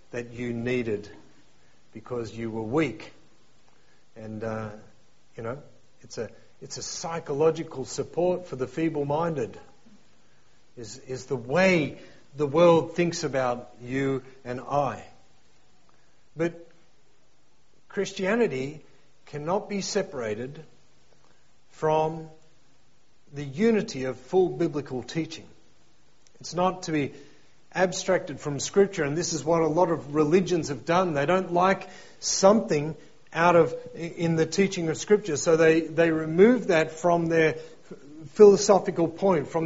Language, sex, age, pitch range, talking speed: English, male, 50-69, 140-180 Hz, 125 wpm